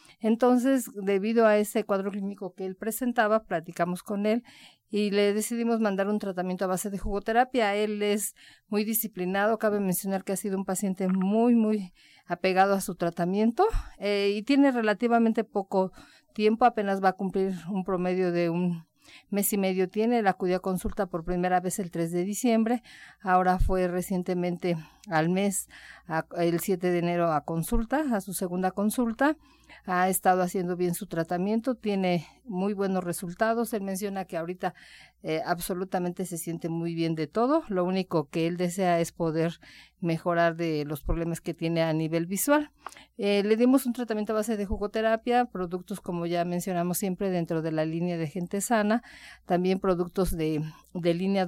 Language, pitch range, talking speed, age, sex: Spanish, 175-215 Hz, 170 wpm, 50-69, female